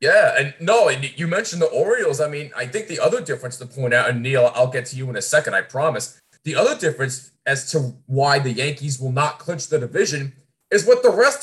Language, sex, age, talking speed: English, male, 20-39, 235 wpm